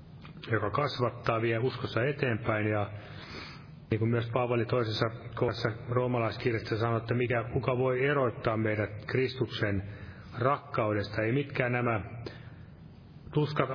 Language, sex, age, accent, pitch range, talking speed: Finnish, male, 30-49, native, 115-135 Hz, 115 wpm